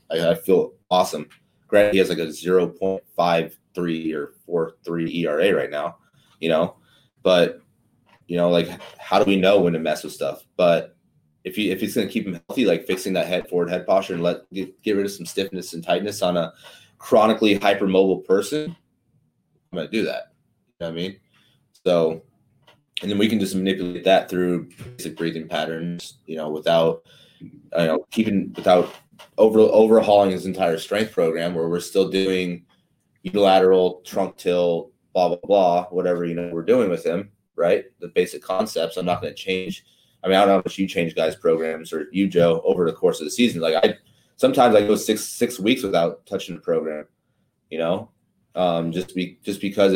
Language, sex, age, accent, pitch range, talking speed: English, male, 30-49, American, 85-100 Hz, 190 wpm